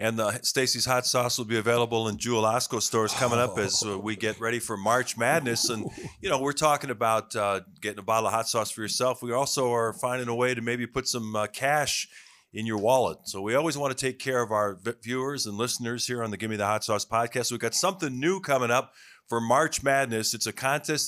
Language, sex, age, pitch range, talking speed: English, male, 30-49, 110-140 Hz, 235 wpm